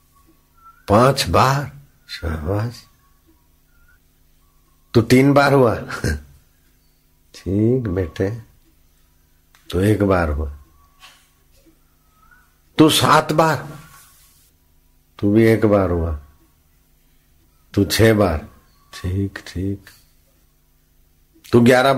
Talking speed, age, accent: 75 wpm, 60-79, native